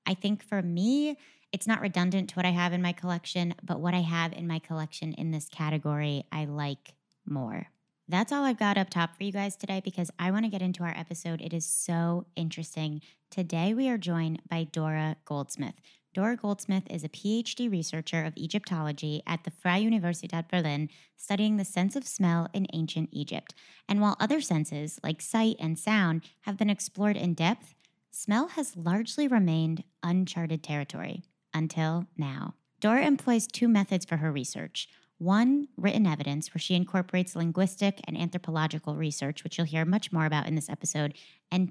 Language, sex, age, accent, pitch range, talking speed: English, female, 20-39, American, 160-200 Hz, 180 wpm